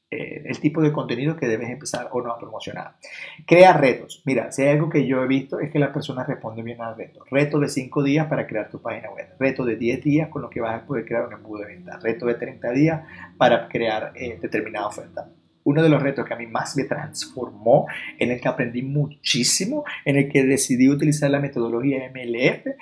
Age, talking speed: 30-49, 225 wpm